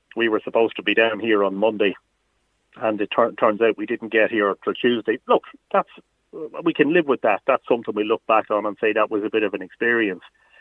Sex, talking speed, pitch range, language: male, 240 wpm, 120-165 Hz, English